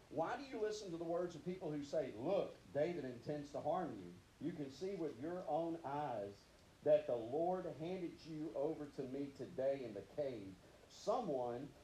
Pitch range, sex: 135-170 Hz, male